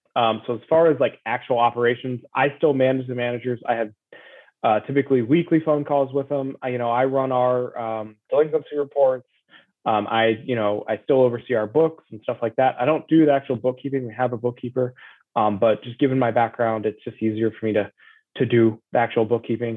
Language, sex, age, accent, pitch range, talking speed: English, male, 20-39, American, 115-140 Hz, 215 wpm